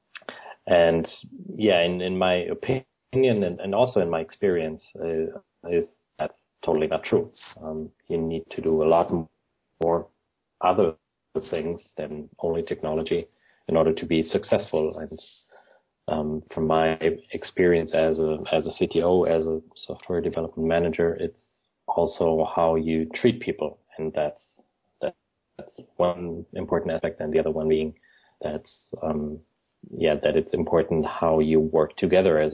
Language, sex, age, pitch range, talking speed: English, male, 30-49, 80-85 Hz, 145 wpm